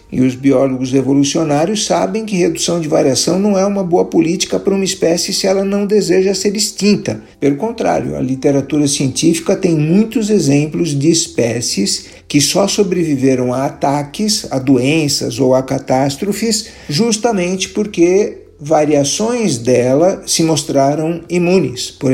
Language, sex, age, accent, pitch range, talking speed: Portuguese, male, 50-69, Brazilian, 130-190 Hz, 140 wpm